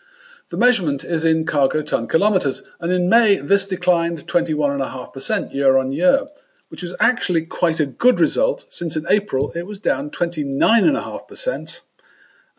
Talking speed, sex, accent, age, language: 145 wpm, male, British, 50-69, English